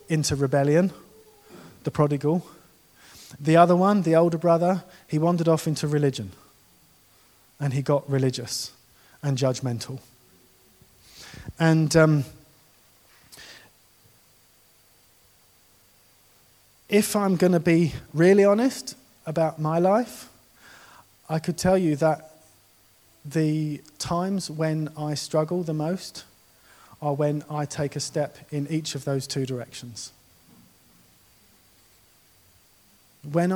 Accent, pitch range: British, 135-165 Hz